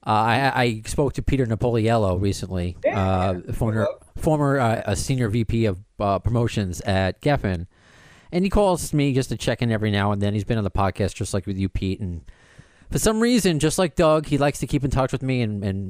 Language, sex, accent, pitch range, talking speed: English, male, American, 105-140 Hz, 225 wpm